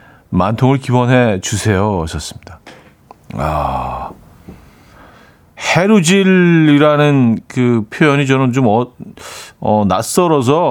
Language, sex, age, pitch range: Korean, male, 40-59, 95-150 Hz